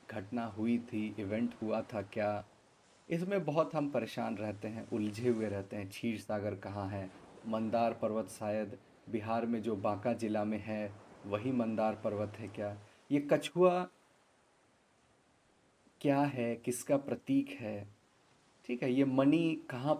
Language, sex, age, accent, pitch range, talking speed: Hindi, male, 30-49, native, 110-145 Hz, 145 wpm